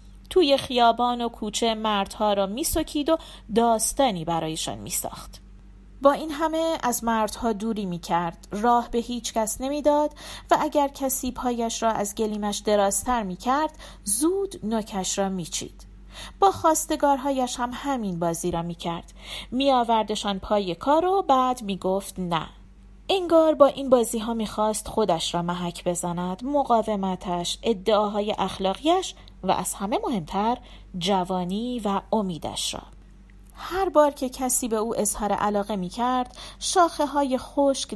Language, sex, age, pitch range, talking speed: Persian, female, 30-49, 195-275 Hz, 130 wpm